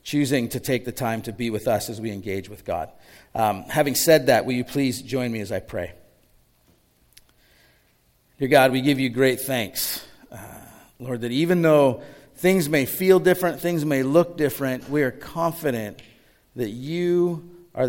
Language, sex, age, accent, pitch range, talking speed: English, male, 40-59, American, 115-150 Hz, 175 wpm